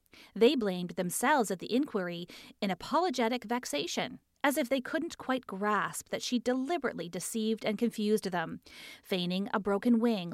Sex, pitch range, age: female, 195-250 Hz, 30-49